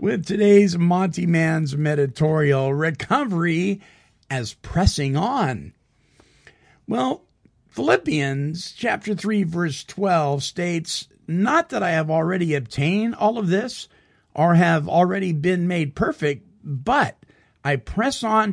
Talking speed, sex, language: 115 wpm, male, English